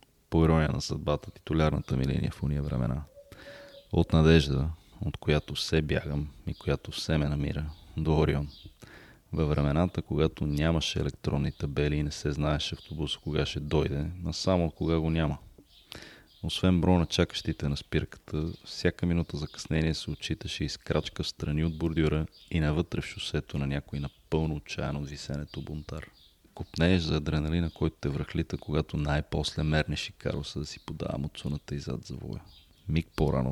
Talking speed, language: 160 wpm, Bulgarian